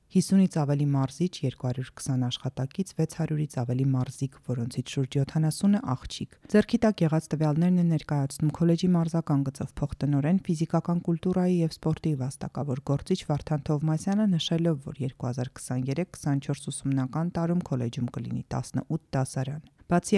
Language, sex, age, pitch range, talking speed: English, female, 30-49, 130-165 Hz, 75 wpm